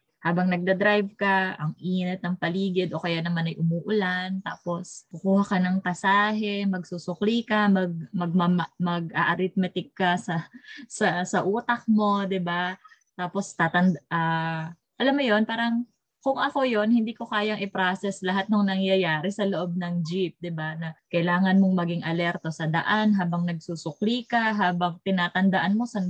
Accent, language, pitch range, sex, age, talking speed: native, Filipino, 165-205 Hz, female, 20-39, 155 wpm